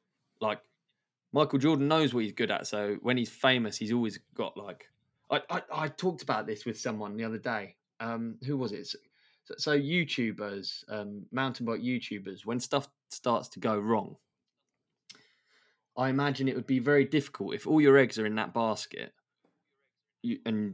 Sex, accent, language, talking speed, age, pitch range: male, British, English, 170 wpm, 20-39, 105-135 Hz